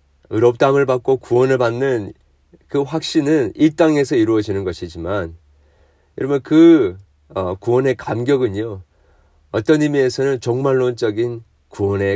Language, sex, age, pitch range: Korean, male, 40-59, 90-135 Hz